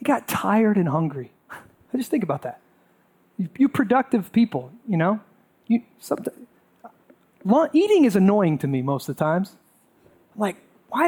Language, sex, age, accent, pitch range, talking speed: English, male, 30-49, American, 160-235 Hz, 160 wpm